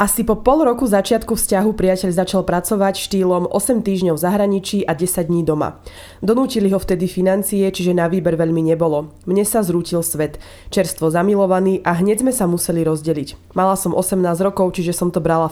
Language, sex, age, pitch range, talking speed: Slovak, female, 20-39, 170-200 Hz, 180 wpm